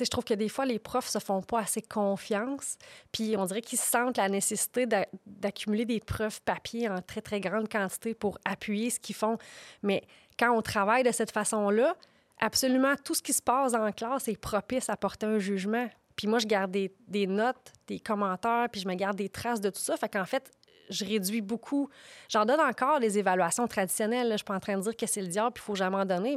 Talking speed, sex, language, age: 240 wpm, female, French, 30-49